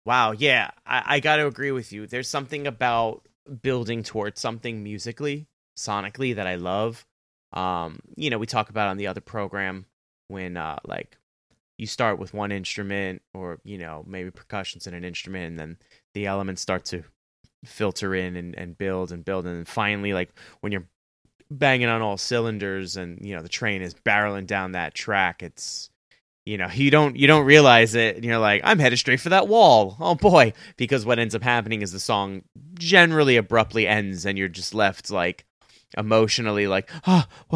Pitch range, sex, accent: 90-115 Hz, male, American